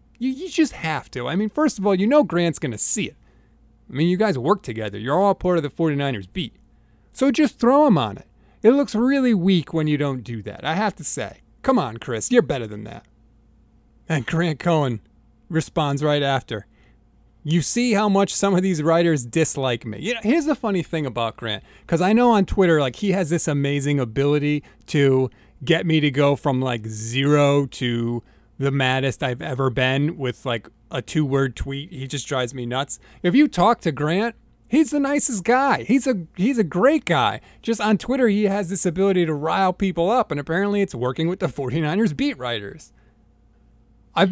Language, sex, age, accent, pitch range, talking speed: English, male, 30-49, American, 130-205 Hz, 205 wpm